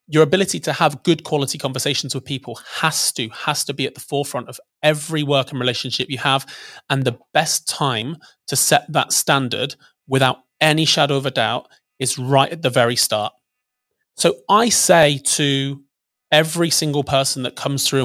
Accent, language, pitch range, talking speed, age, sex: British, English, 130-160 Hz, 180 wpm, 30-49, male